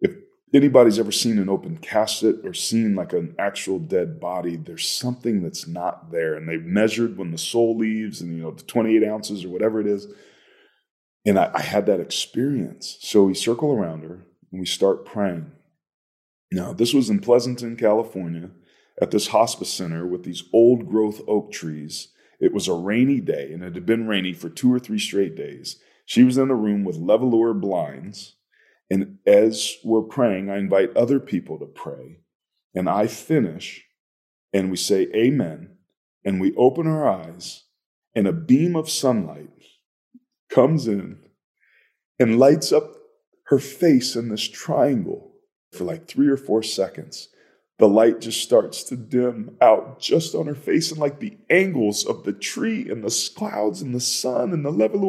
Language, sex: English, male